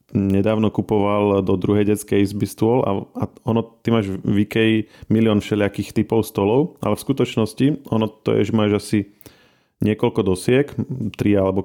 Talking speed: 160 wpm